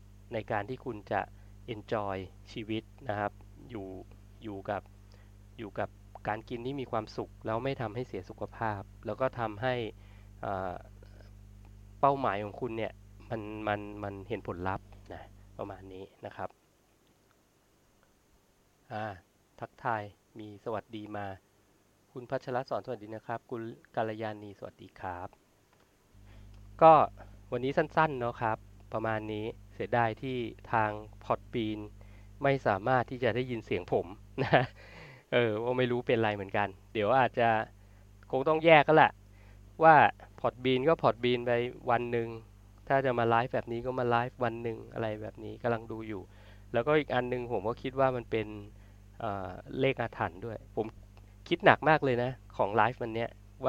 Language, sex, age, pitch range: Thai, male, 20-39, 100-120 Hz